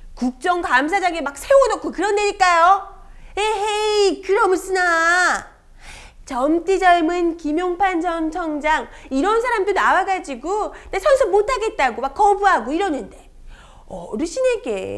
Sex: female